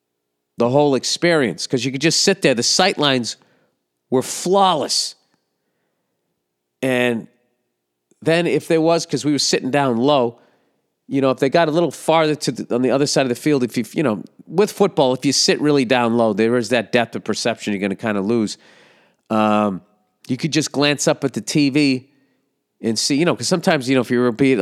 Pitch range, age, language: 105-145 Hz, 40-59, English